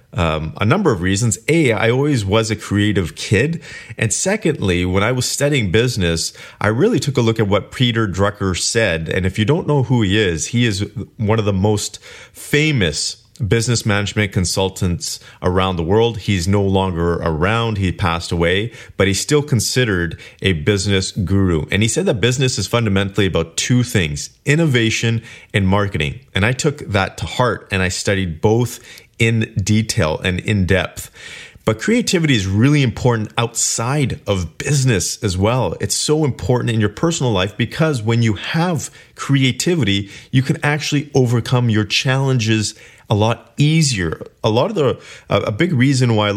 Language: English